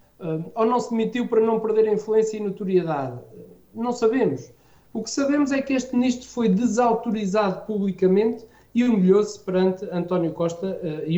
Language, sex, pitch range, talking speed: Portuguese, male, 160-200 Hz, 165 wpm